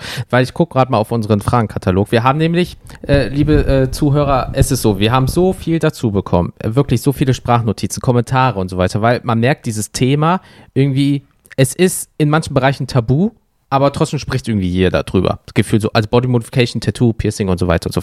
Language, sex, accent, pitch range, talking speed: German, male, German, 110-140 Hz, 215 wpm